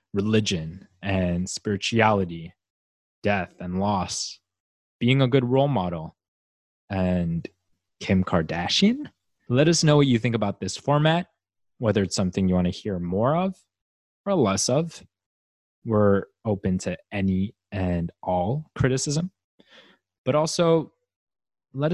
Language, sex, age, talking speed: English, male, 20-39, 125 wpm